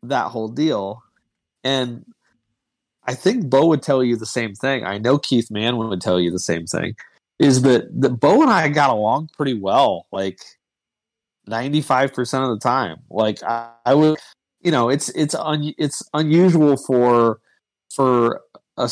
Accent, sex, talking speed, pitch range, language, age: American, male, 170 wpm, 105-145 Hz, English, 30-49